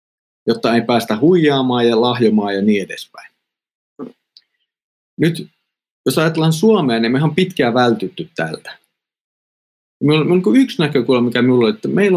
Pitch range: 110-155 Hz